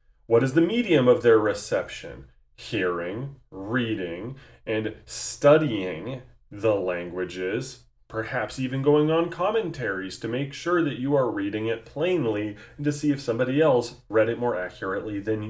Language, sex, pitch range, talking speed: English, male, 110-145 Hz, 145 wpm